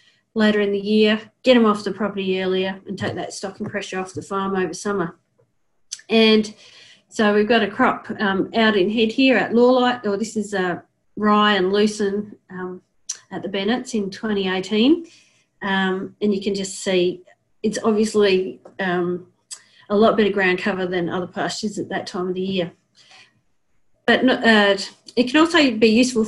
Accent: Australian